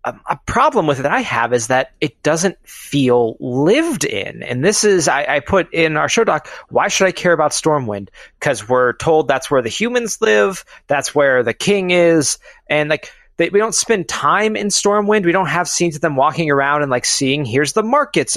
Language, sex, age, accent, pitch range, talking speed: English, male, 30-49, American, 135-195 Hz, 220 wpm